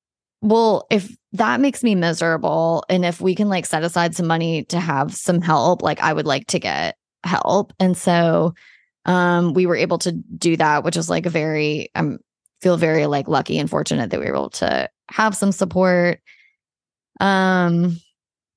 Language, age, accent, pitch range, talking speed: English, 20-39, American, 165-190 Hz, 180 wpm